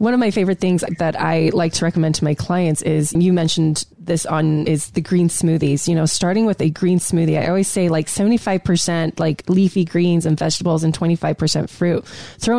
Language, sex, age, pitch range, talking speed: English, female, 20-39, 160-195 Hz, 205 wpm